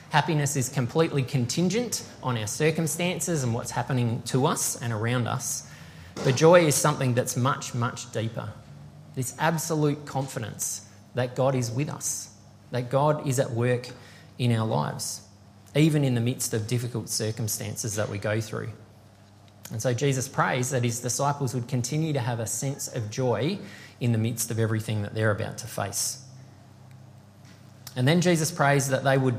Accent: Australian